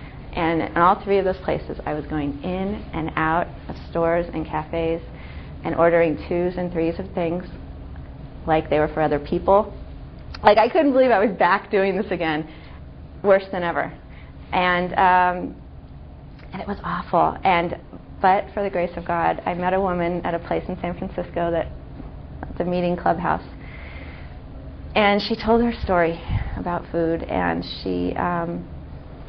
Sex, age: female, 30-49